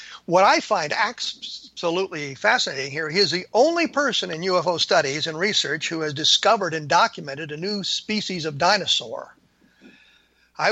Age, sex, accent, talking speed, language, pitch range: 50-69, male, American, 150 wpm, English, 170-210 Hz